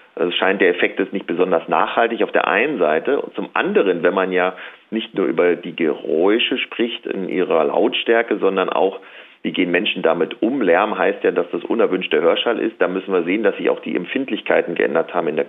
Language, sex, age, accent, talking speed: German, male, 40-59, German, 215 wpm